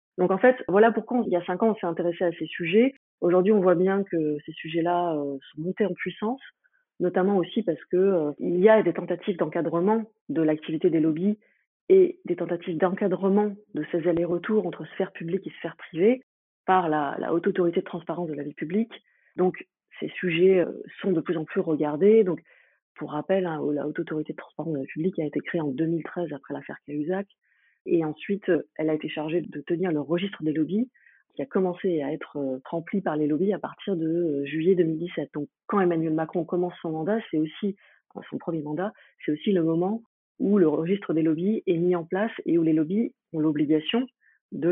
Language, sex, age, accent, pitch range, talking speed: French, female, 30-49, French, 160-200 Hz, 205 wpm